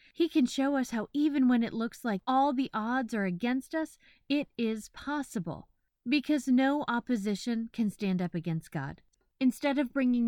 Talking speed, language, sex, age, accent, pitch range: 175 wpm, English, female, 30-49, American, 200-275 Hz